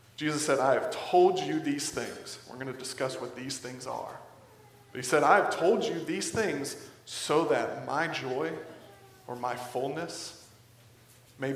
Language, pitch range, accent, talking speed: English, 125-140 Hz, American, 170 wpm